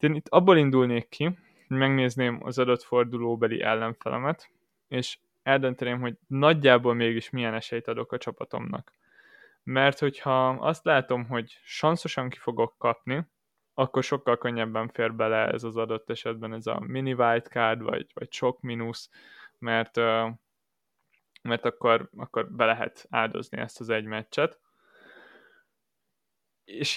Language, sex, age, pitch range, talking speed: Hungarian, male, 20-39, 115-140 Hz, 130 wpm